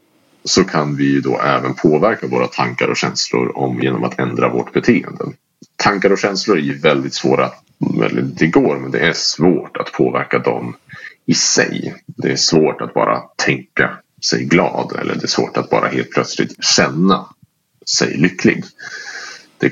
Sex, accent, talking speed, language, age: male, Norwegian, 165 wpm, Swedish, 40-59